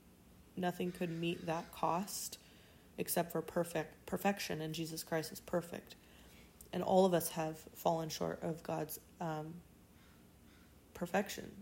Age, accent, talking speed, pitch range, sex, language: 20-39, American, 130 wpm, 160-185 Hz, female, English